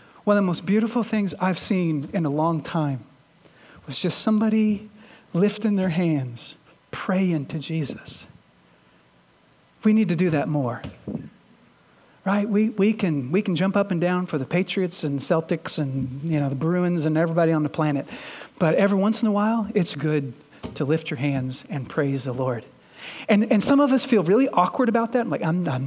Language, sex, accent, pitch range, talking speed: English, male, American, 155-220 Hz, 190 wpm